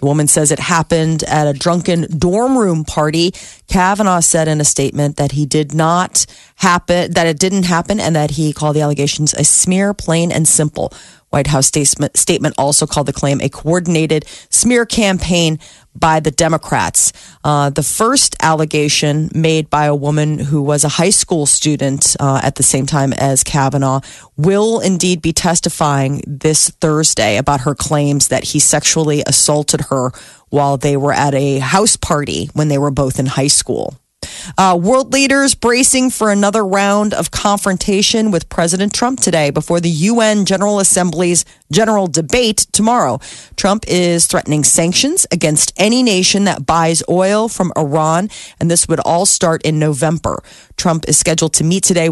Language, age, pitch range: Japanese, 30-49, 150-185 Hz